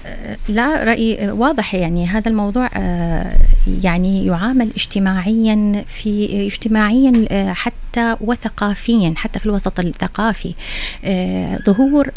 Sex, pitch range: female, 195-250 Hz